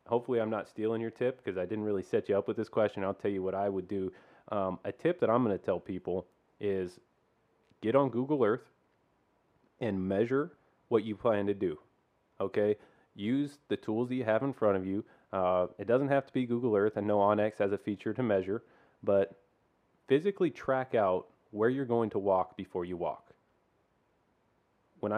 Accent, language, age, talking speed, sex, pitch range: American, English, 30-49, 200 wpm, male, 100-115 Hz